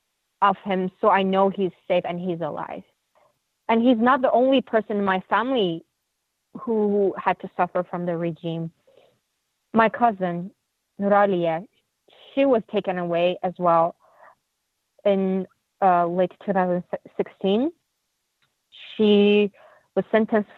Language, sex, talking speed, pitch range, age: English, female, 120 wpm, 180-210 Hz, 20-39